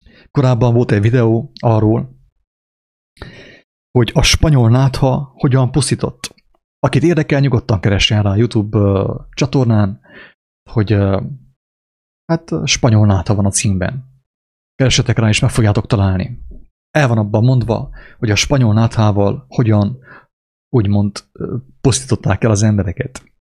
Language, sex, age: English, male, 30-49